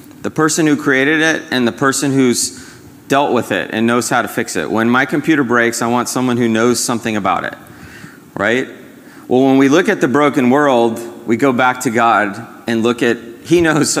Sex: male